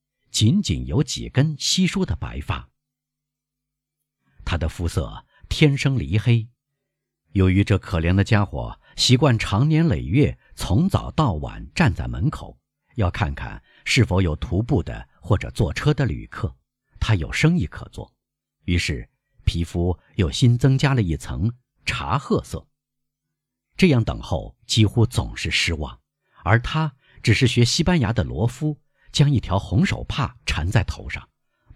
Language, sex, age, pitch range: Chinese, male, 50-69, 90-135 Hz